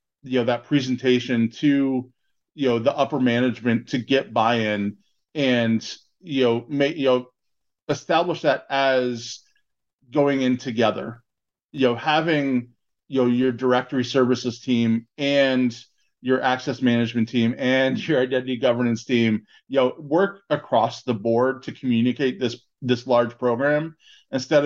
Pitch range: 115-135 Hz